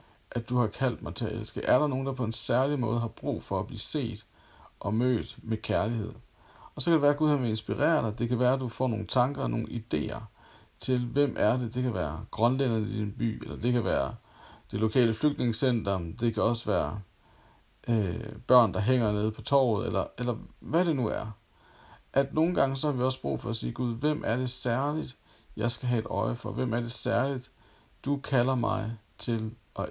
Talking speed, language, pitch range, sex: 225 wpm, Danish, 110-130 Hz, male